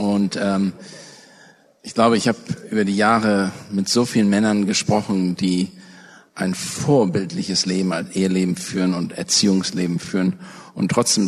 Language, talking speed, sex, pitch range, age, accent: German, 140 wpm, male, 95-105 Hz, 50-69, German